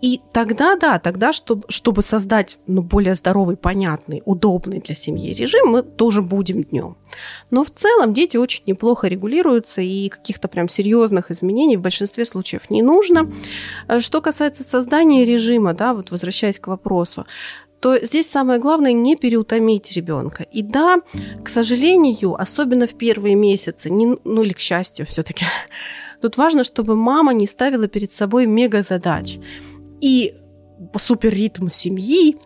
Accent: native